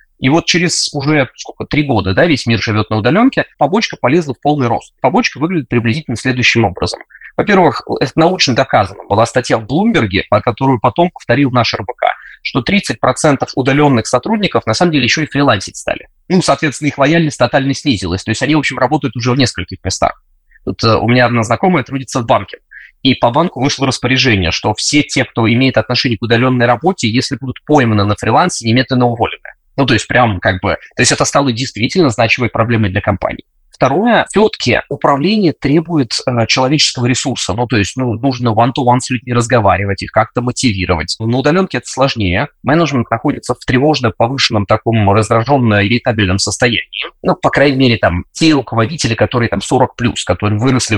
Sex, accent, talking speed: male, native, 180 wpm